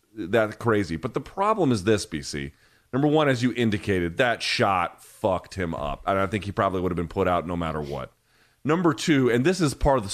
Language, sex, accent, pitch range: English, male, American, 115-170 Hz